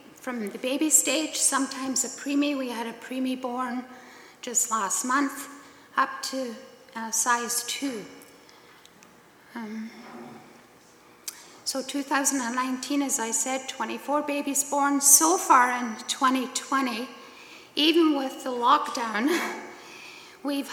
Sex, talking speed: female, 105 wpm